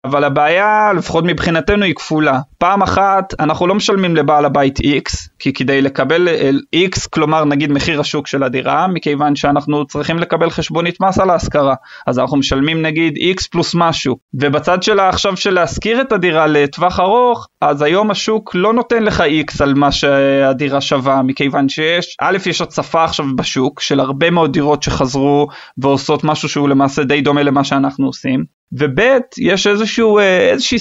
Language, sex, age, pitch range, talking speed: Hebrew, male, 20-39, 145-190 Hz, 165 wpm